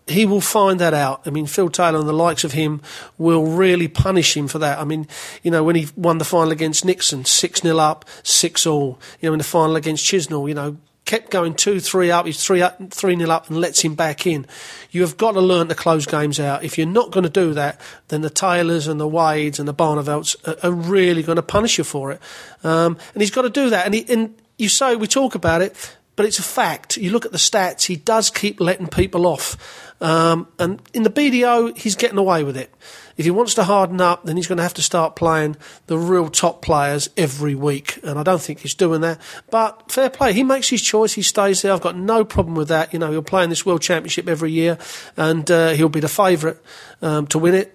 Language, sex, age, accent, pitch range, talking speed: English, male, 40-59, British, 160-195 Hz, 250 wpm